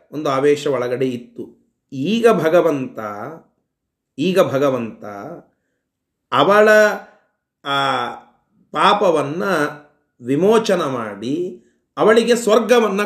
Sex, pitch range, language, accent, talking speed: male, 140-185 Hz, Kannada, native, 70 wpm